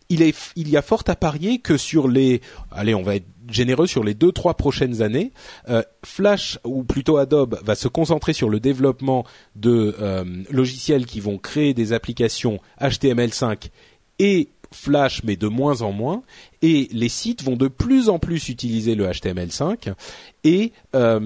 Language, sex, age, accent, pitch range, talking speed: French, male, 30-49, French, 110-155 Hz, 165 wpm